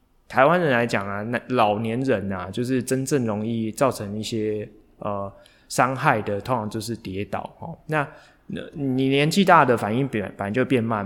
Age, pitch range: 20-39, 105-130 Hz